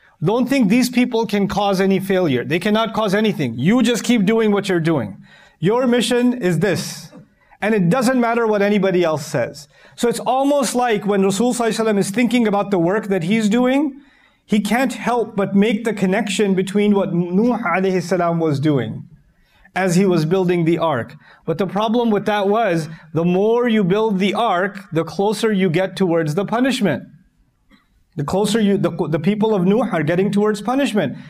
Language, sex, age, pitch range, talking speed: English, male, 30-49, 180-230 Hz, 180 wpm